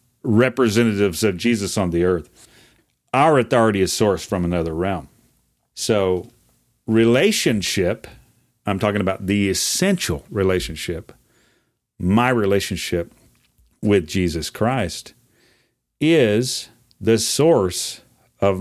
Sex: male